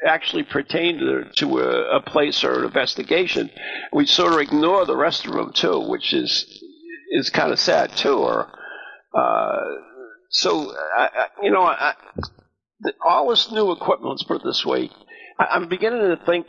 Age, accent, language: 50-69, American, English